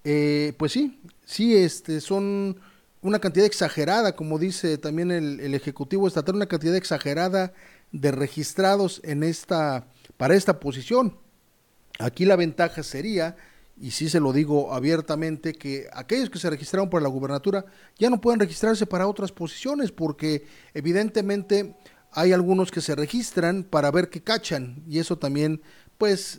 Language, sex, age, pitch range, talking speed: Spanish, male, 40-59, 150-195 Hz, 150 wpm